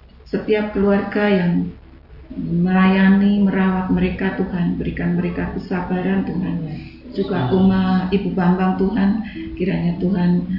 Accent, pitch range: native, 175-195 Hz